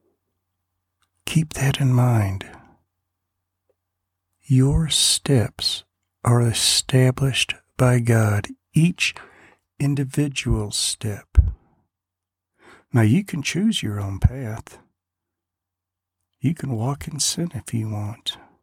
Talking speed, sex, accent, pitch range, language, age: 90 wpm, male, American, 90-130 Hz, English, 60-79